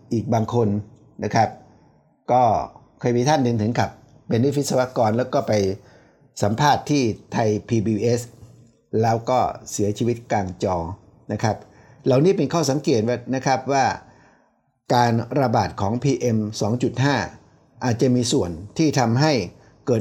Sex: male